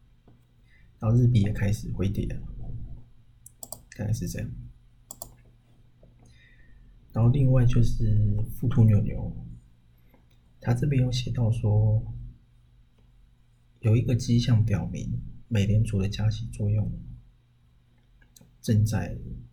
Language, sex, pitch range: Chinese, male, 100-120 Hz